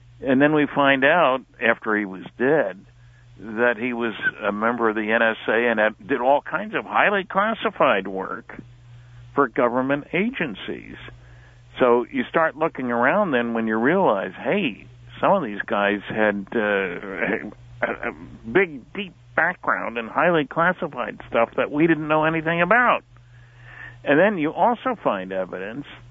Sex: male